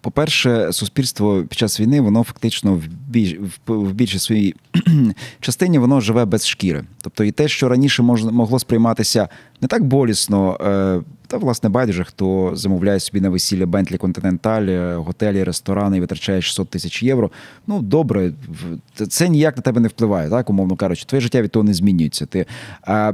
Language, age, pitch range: Ukrainian, 30-49, 100-125 Hz